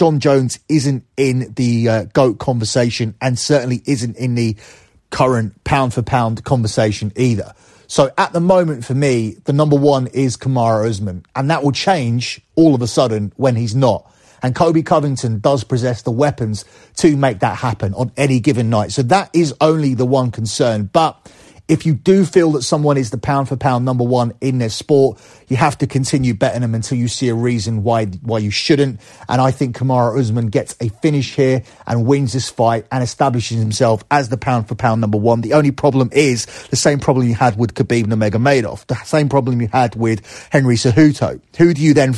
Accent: British